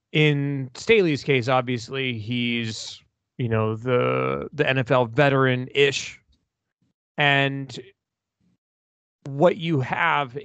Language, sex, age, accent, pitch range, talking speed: English, male, 30-49, American, 115-145 Hz, 85 wpm